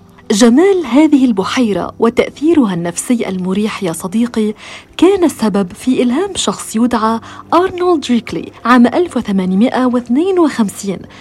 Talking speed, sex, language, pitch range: 95 wpm, female, Arabic, 205-285 Hz